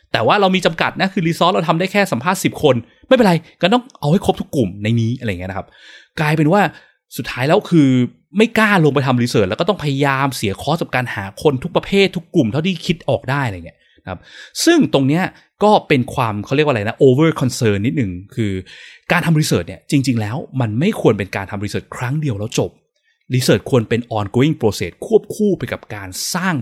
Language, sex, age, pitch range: Thai, male, 20-39, 110-170 Hz